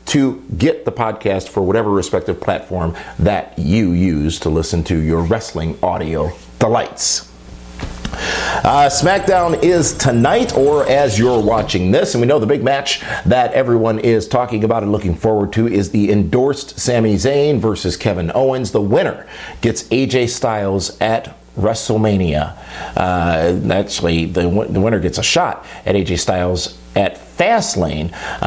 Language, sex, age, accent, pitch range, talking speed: English, male, 50-69, American, 85-115 Hz, 150 wpm